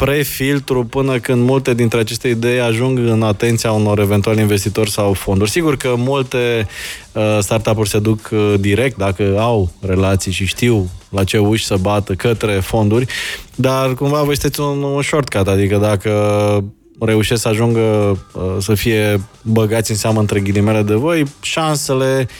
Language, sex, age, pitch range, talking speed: Romanian, male, 20-39, 105-130 Hz, 145 wpm